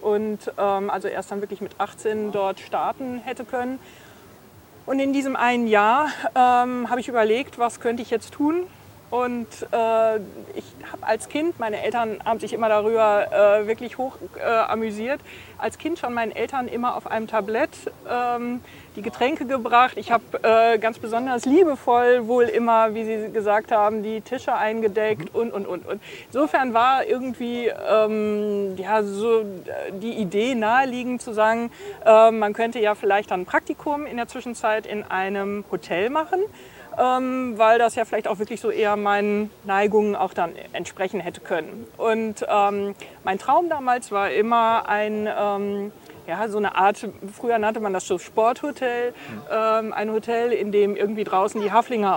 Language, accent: German, German